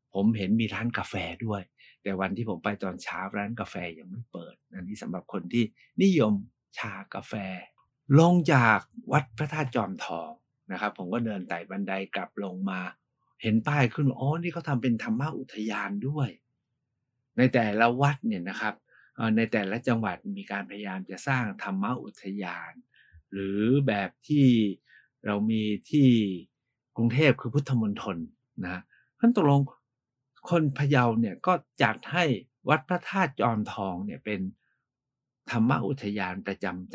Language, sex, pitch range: Thai, male, 105-140 Hz